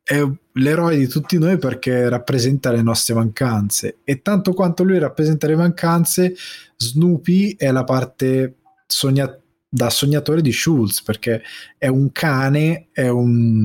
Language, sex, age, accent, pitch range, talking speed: Italian, male, 20-39, native, 115-150 Hz, 135 wpm